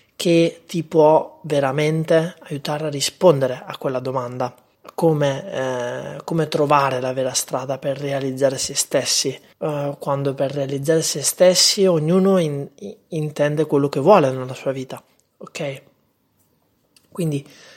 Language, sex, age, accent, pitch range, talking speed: Italian, male, 30-49, native, 135-170 Hz, 130 wpm